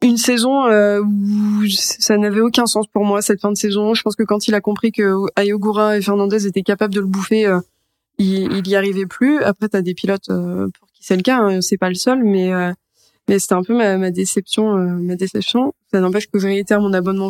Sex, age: female, 20-39